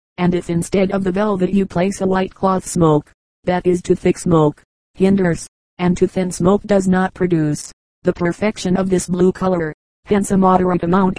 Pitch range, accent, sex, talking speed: 175-195 Hz, American, female, 190 wpm